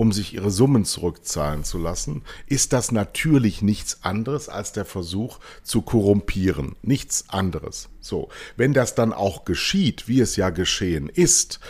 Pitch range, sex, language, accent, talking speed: 90-125 Hz, male, German, German, 155 wpm